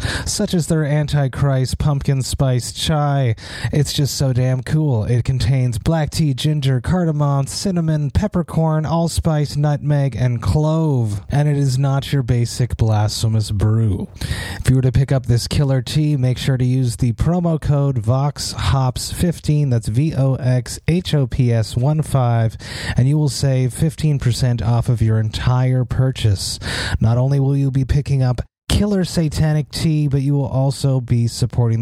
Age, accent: 30-49, American